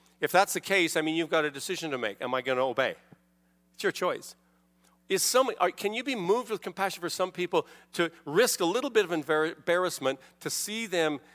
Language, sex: English, male